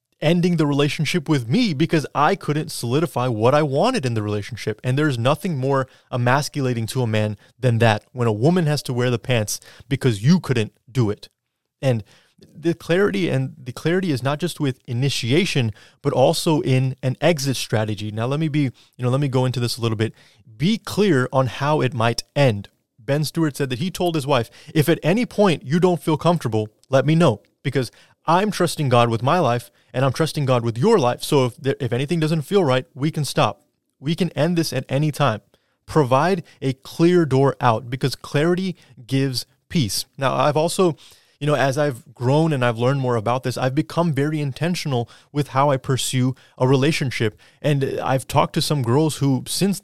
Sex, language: male, English